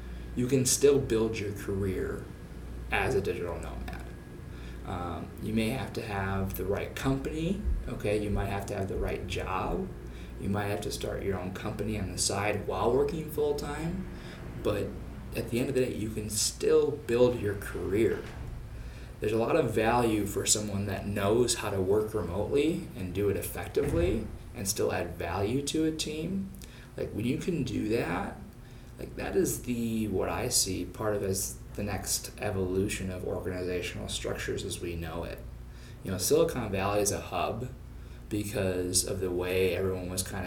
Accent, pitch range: American, 90-115 Hz